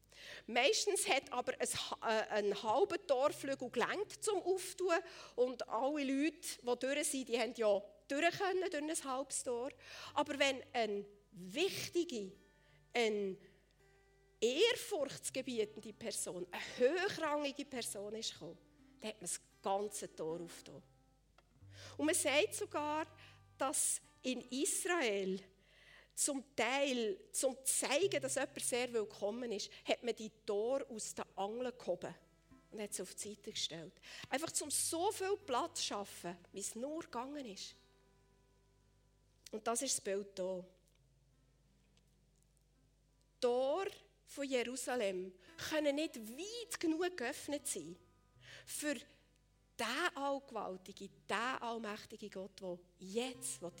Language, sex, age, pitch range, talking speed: German, female, 50-69, 195-290 Hz, 120 wpm